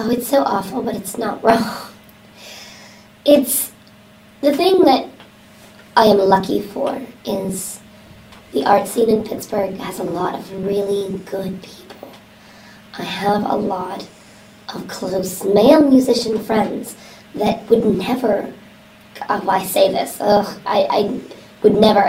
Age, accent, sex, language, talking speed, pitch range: 20-39, American, male, English, 135 wpm, 200-250 Hz